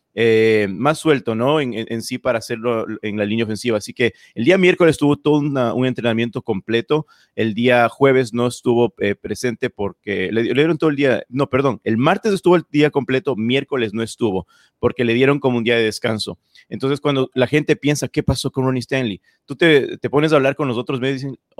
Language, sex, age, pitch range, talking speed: Spanish, male, 30-49, 115-145 Hz, 220 wpm